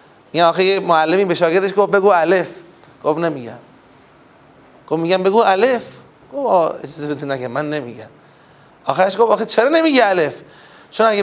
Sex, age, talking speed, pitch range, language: male, 30-49, 155 wpm, 160-210 Hz, Persian